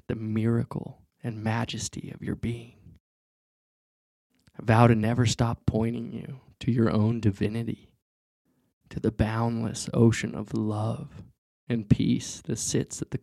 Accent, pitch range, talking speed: American, 100-120 Hz, 135 wpm